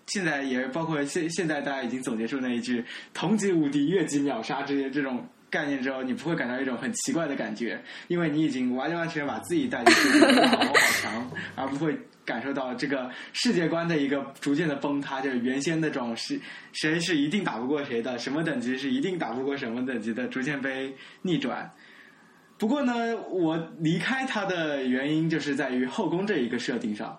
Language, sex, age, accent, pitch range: Chinese, male, 20-39, native, 135-165 Hz